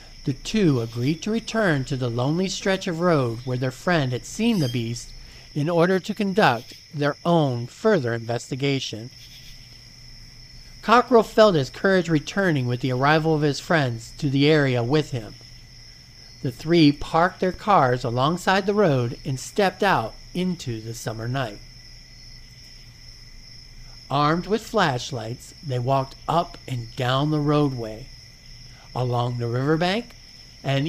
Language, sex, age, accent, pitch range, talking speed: English, male, 50-69, American, 125-165 Hz, 140 wpm